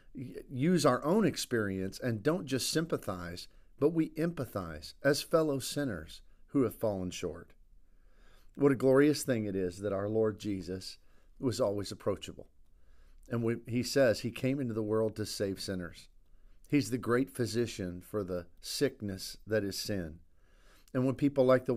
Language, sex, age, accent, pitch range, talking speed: English, male, 50-69, American, 95-125 Hz, 155 wpm